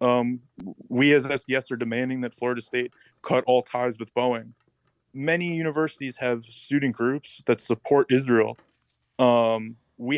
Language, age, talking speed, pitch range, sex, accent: English, 20-39, 140 wpm, 115-130 Hz, male, American